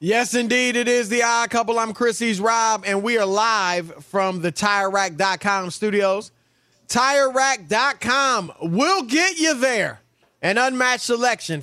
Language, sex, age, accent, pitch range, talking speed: English, male, 30-49, American, 175-225 Hz, 130 wpm